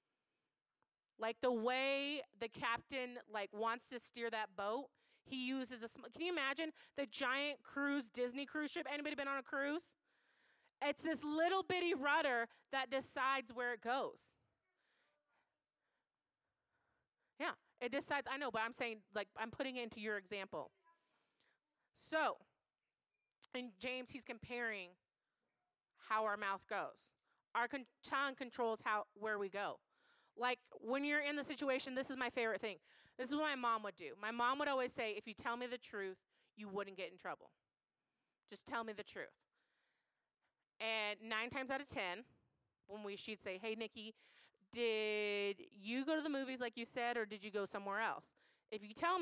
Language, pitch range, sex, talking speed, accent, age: English, 220-280 Hz, female, 165 wpm, American, 30-49